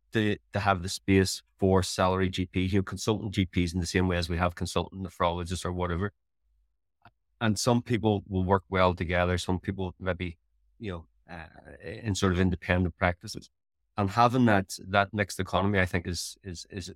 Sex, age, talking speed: male, 30-49, 185 wpm